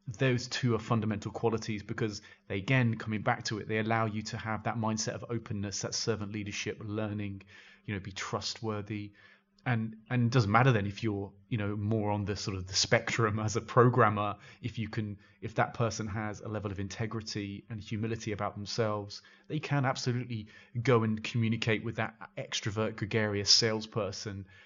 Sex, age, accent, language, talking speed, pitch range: male, 30-49, British, English, 185 wpm, 105-120 Hz